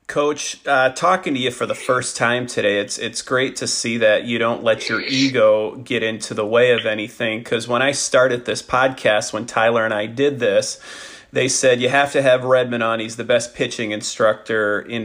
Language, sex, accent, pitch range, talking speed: English, male, American, 110-130 Hz, 210 wpm